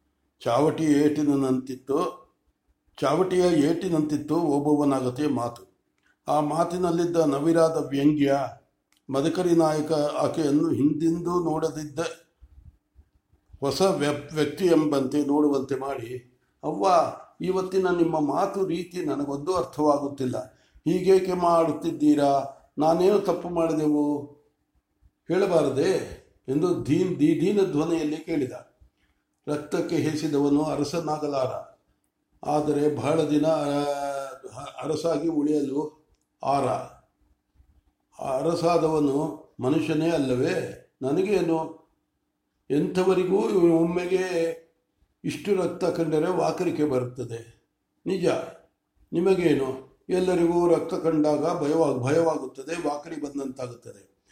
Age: 60-79